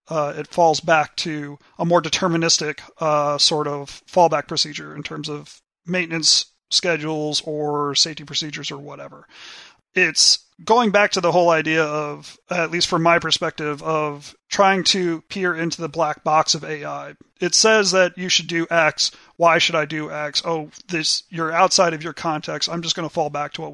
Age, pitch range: 30-49, 150-175 Hz